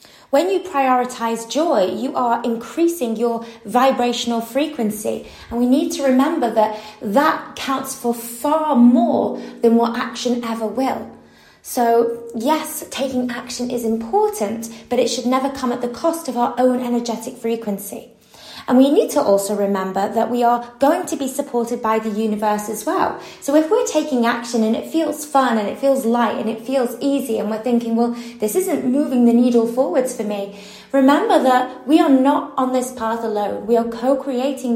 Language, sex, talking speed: English, female, 180 wpm